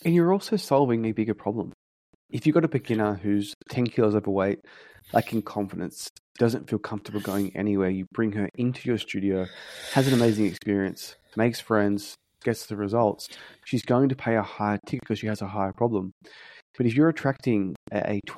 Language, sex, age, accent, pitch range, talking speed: English, male, 20-39, Australian, 100-125 Hz, 185 wpm